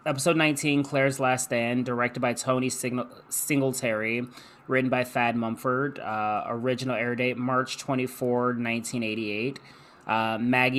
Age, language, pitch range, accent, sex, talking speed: 20-39, English, 115-130 Hz, American, male, 110 wpm